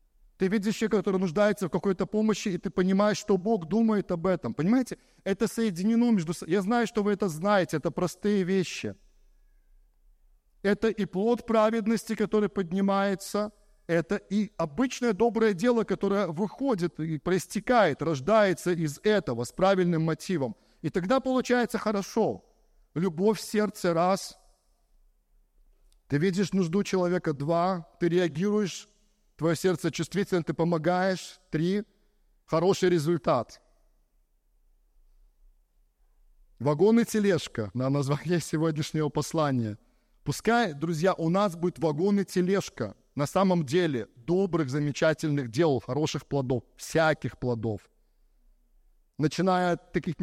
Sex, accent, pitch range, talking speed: male, native, 155-205 Hz, 120 wpm